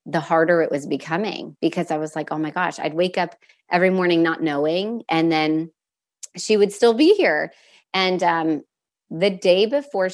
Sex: female